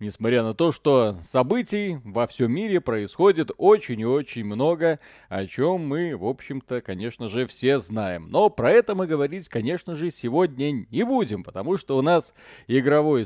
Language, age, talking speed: Russian, 30-49, 170 wpm